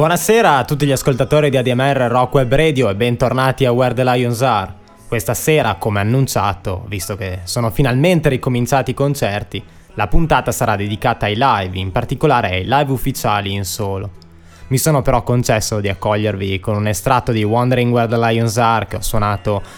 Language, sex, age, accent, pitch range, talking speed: Italian, male, 20-39, native, 100-125 Hz, 180 wpm